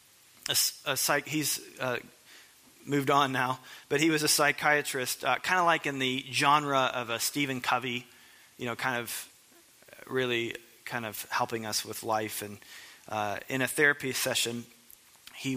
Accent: American